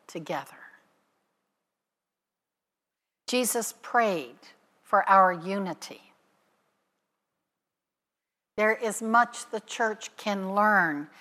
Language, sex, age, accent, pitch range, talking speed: English, female, 60-79, American, 195-250 Hz, 70 wpm